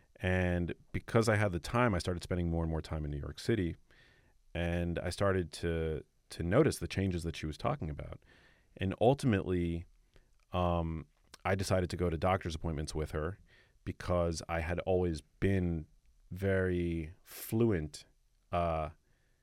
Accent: American